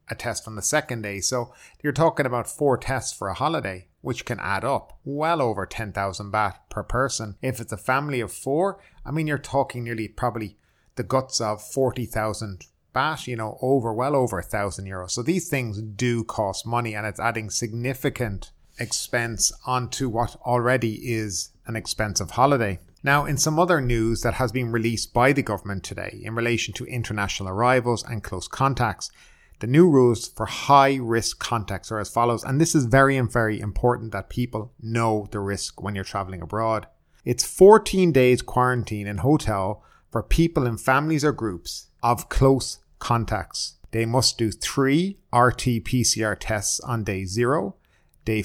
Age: 30-49